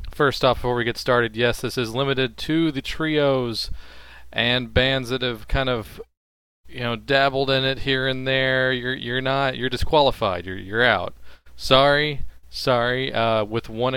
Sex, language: male, English